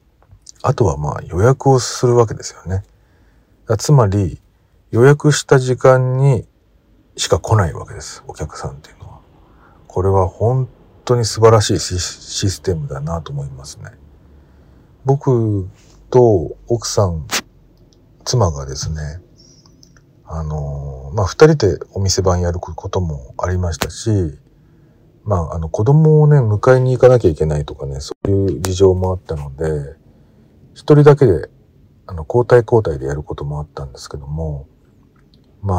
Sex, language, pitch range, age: male, Japanese, 80-130 Hz, 50-69